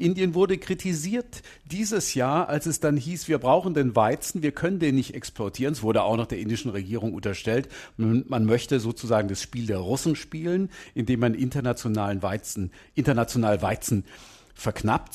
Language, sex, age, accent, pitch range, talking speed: German, male, 50-69, German, 110-155 Hz, 160 wpm